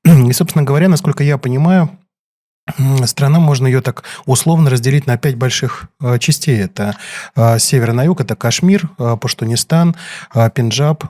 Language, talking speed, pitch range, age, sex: Russian, 130 wpm, 115-145 Hz, 20-39, male